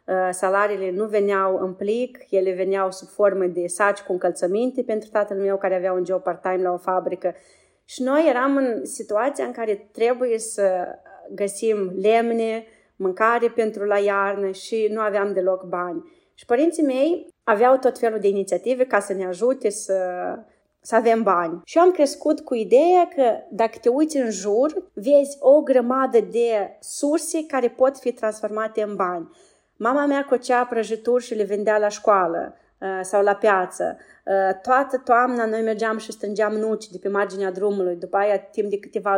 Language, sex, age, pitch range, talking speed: Romanian, female, 30-49, 195-235 Hz, 170 wpm